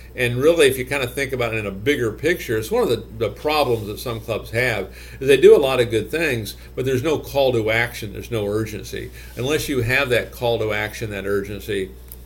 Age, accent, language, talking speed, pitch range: 50-69, American, English, 240 wpm, 95-140 Hz